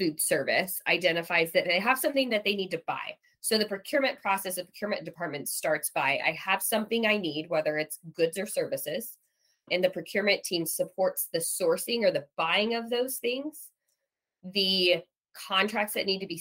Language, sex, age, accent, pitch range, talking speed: English, female, 20-39, American, 165-210 Hz, 185 wpm